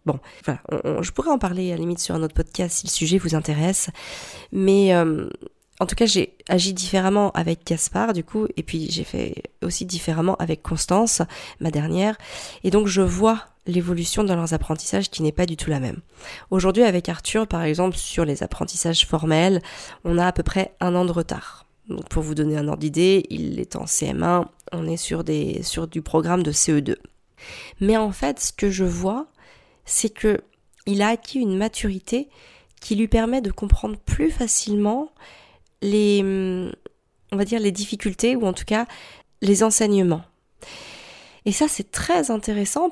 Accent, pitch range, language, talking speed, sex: French, 175-225 Hz, French, 185 wpm, female